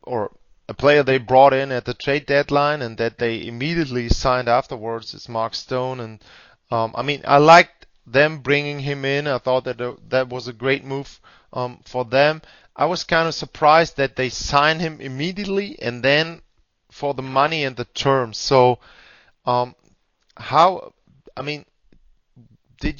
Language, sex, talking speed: German, male, 170 wpm